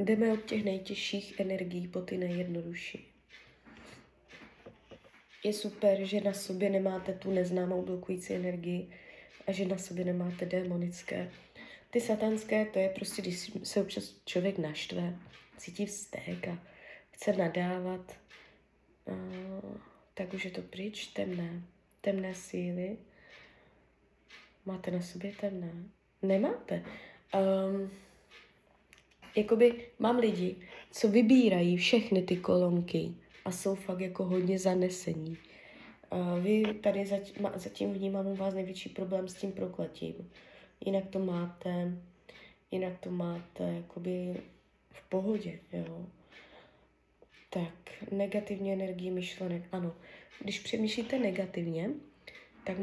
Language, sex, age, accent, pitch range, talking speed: Czech, female, 20-39, native, 180-200 Hz, 110 wpm